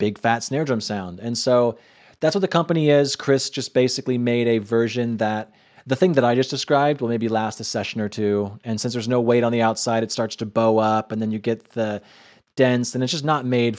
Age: 30-49